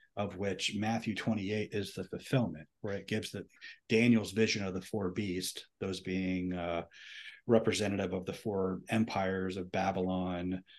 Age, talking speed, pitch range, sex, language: 40-59, 155 wpm, 95-110 Hz, male, English